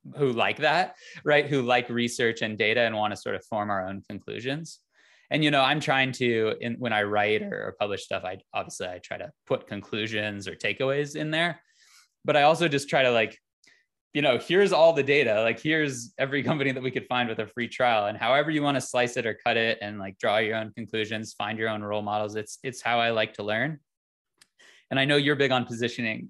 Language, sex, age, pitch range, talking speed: English, male, 20-39, 110-135 Hz, 230 wpm